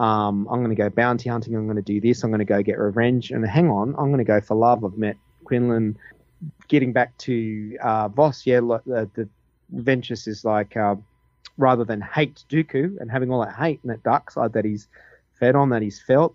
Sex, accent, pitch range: male, Australian, 110-130 Hz